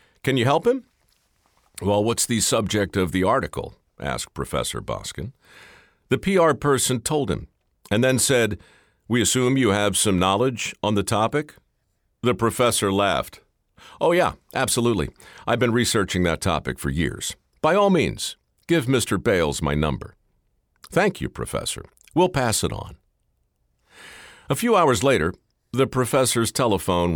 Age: 50-69